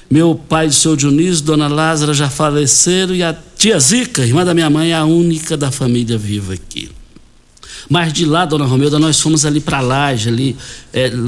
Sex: male